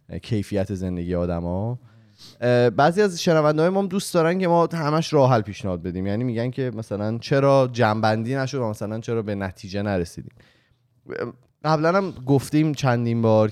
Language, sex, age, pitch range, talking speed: Persian, male, 20-39, 95-125 Hz, 155 wpm